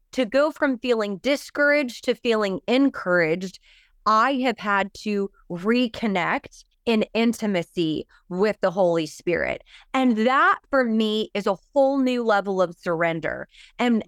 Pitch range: 195-245 Hz